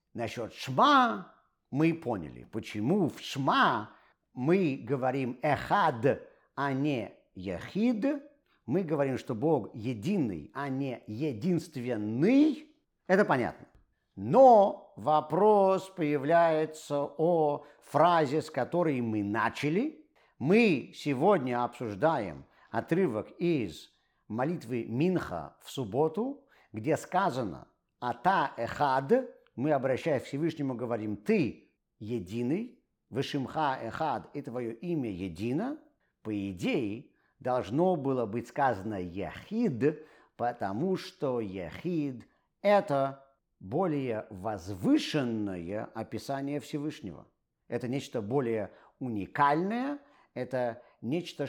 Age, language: 50-69, Russian